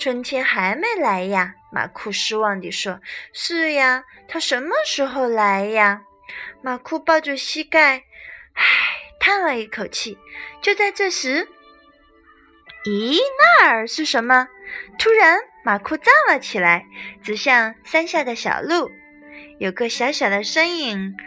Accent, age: native, 30-49